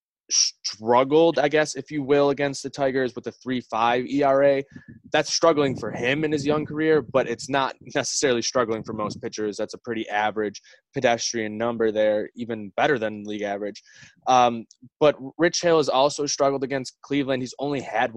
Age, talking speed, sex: 20-39, 175 wpm, male